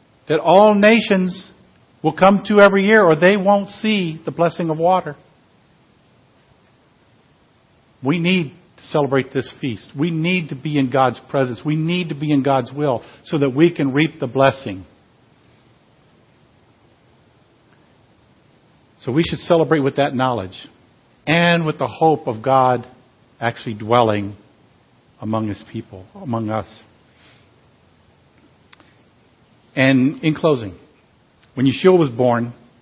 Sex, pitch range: male, 115-155 Hz